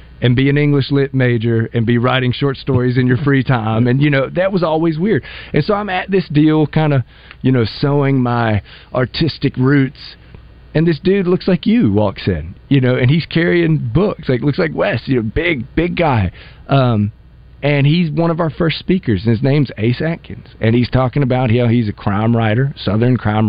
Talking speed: 215 wpm